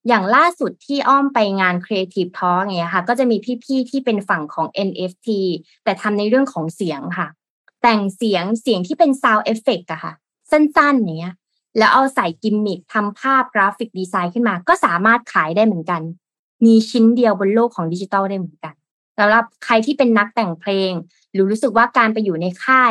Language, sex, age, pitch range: Thai, female, 20-39, 180-230 Hz